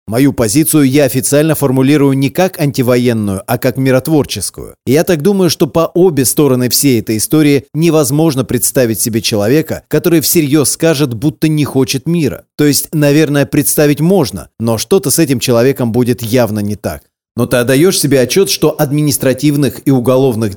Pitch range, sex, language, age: 125-155 Hz, male, Russian, 30-49